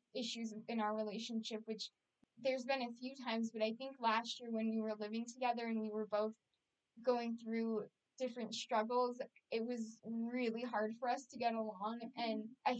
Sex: female